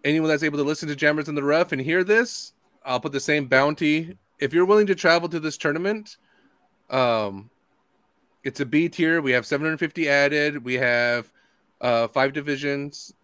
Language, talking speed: English, 180 wpm